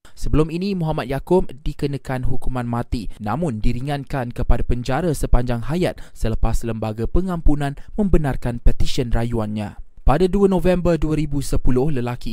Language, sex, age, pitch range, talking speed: Malay, male, 20-39, 120-150 Hz, 115 wpm